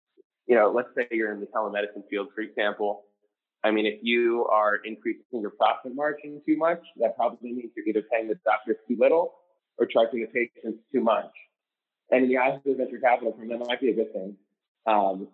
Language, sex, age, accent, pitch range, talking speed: English, male, 20-39, American, 105-130 Hz, 220 wpm